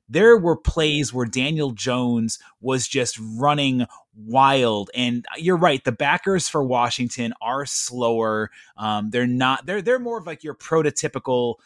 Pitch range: 120-155 Hz